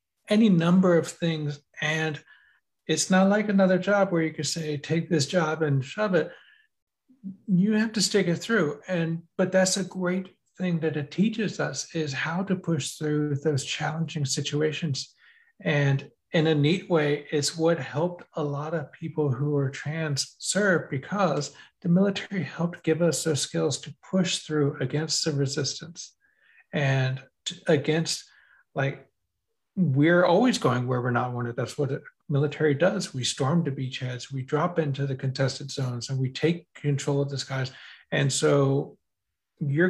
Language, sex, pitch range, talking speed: English, male, 140-180 Hz, 165 wpm